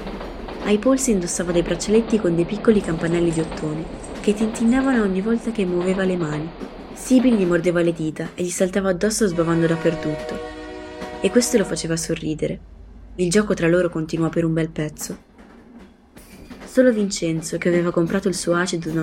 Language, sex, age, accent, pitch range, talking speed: Italian, female, 20-39, native, 165-200 Hz, 165 wpm